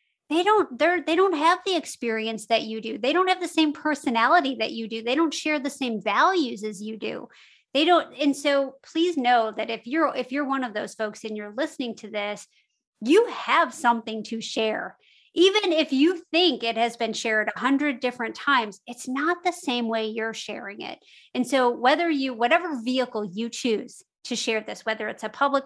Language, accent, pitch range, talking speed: English, American, 220-285 Hz, 210 wpm